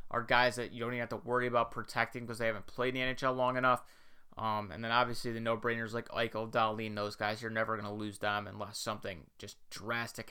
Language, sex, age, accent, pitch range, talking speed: English, male, 20-39, American, 110-130 Hz, 240 wpm